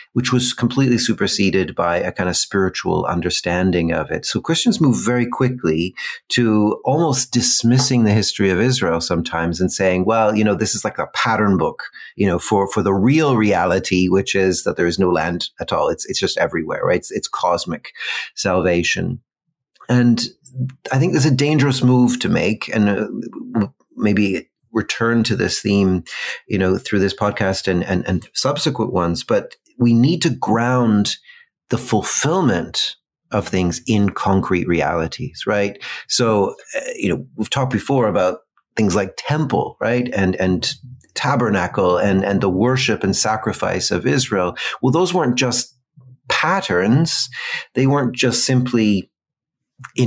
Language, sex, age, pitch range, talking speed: English, male, 40-59, 95-125 Hz, 160 wpm